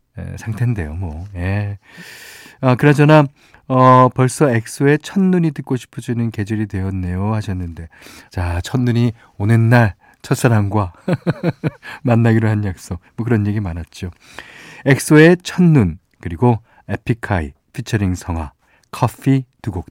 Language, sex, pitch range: Korean, male, 95-130 Hz